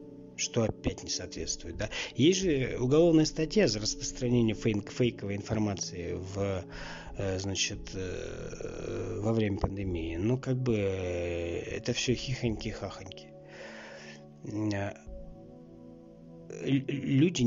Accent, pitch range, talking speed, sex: native, 100-130 Hz, 80 wpm, male